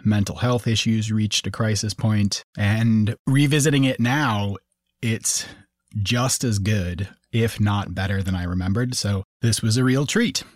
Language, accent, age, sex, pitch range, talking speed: English, American, 30-49, male, 105-140 Hz, 155 wpm